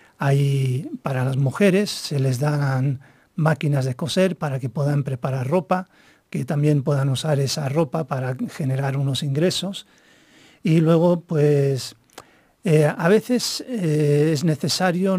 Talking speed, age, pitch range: 135 wpm, 50-69, 140-170 Hz